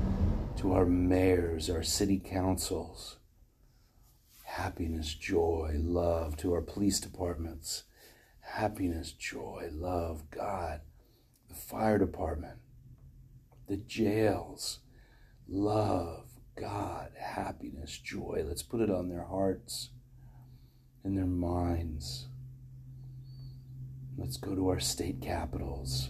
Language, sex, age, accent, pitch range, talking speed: English, male, 40-59, American, 85-100 Hz, 95 wpm